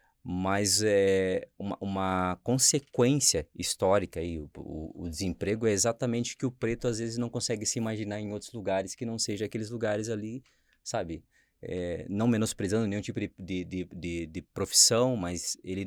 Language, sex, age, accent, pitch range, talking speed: Portuguese, male, 20-39, Brazilian, 90-110 Hz, 170 wpm